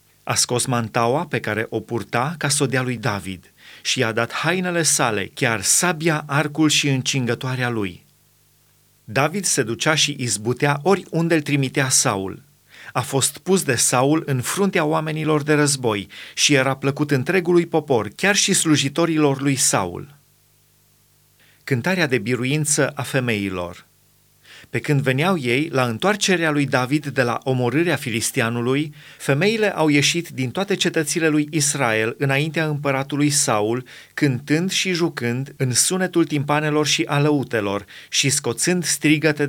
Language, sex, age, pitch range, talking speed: Romanian, male, 30-49, 125-155 Hz, 135 wpm